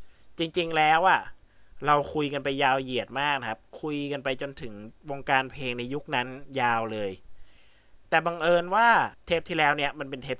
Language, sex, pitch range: Thai, male, 110-155 Hz